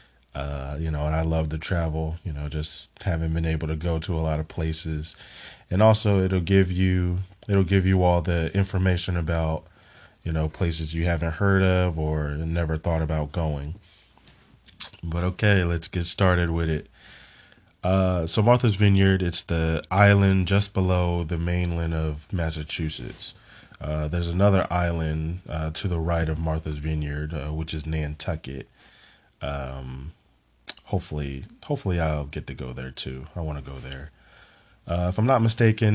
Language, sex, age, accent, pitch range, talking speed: English, male, 20-39, American, 80-95 Hz, 165 wpm